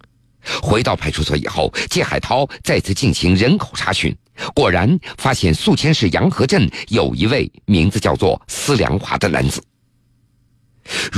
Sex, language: male, Chinese